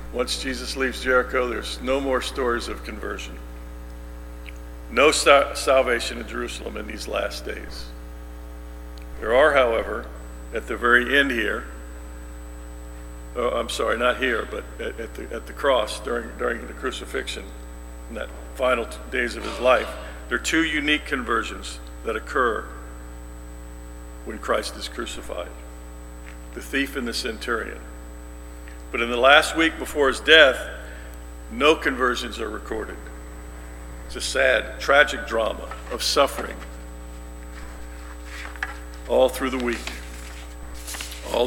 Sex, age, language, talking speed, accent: male, 50-69, English, 130 wpm, American